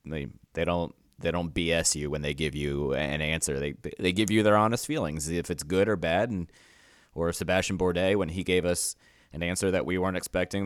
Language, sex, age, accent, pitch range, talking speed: English, male, 30-49, American, 80-95 Hz, 220 wpm